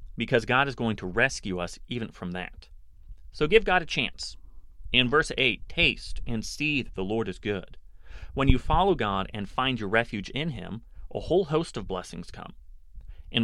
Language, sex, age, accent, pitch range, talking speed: English, male, 30-49, American, 90-125 Hz, 190 wpm